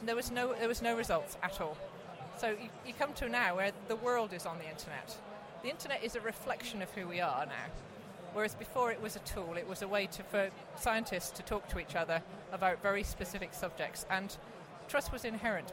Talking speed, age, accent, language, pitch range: 220 wpm, 40-59, British, English, 180-230 Hz